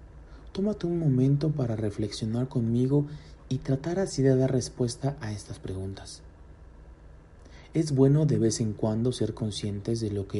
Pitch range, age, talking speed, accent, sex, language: 95-140 Hz, 40-59, 150 wpm, Mexican, male, Spanish